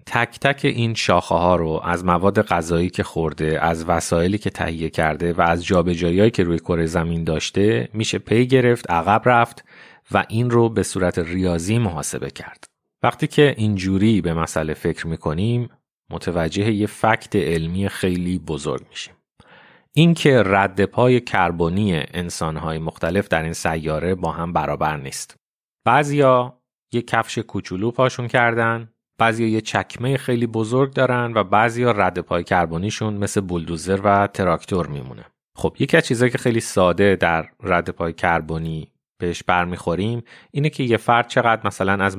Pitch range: 85-115 Hz